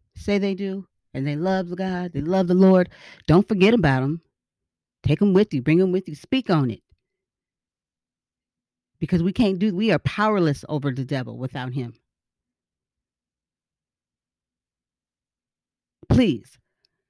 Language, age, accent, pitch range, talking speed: English, 40-59, American, 135-190 Hz, 135 wpm